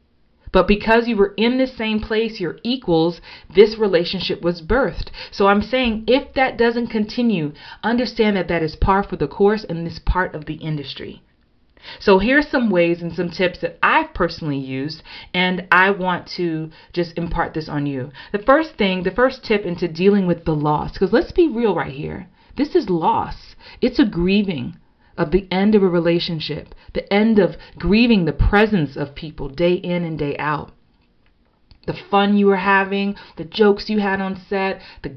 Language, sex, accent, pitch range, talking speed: English, female, American, 175-225 Hz, 185 wpm